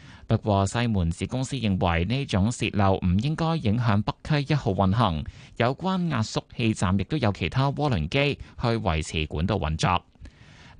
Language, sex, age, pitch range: Chinese, male, 20-39, 95-130 Hz